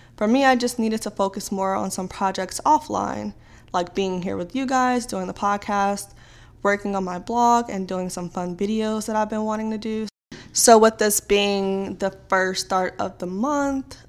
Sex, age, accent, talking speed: female, 20-39, American, 195 wpm